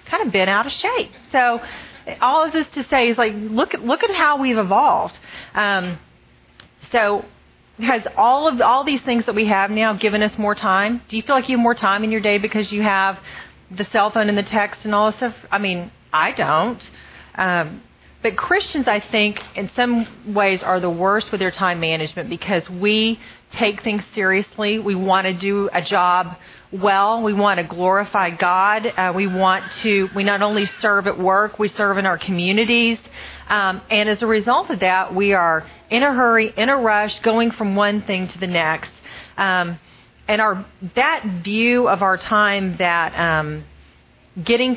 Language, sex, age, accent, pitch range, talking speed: English, female, 40-59, American, 185-220 Hz, 195 wpm